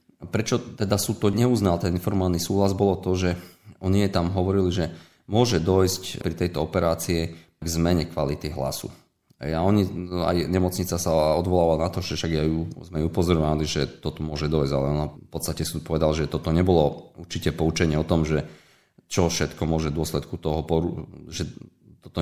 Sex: male